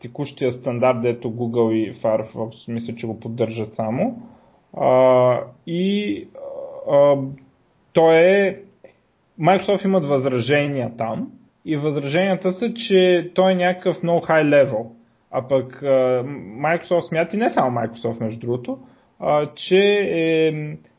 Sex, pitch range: male, 130-170 Hz